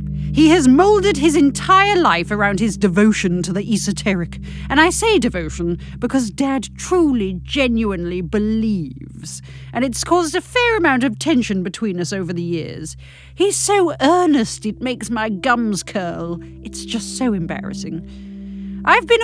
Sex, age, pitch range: female, 40-59, 170-270 Hz